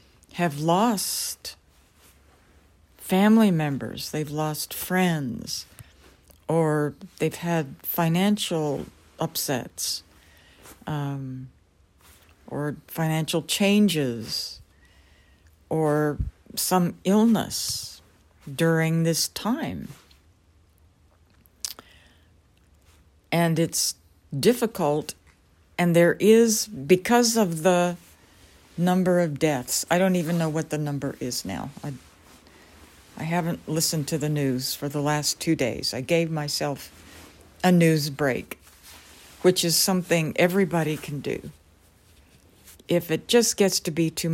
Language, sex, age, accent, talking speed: English, female, 60-79, American, 100 wpm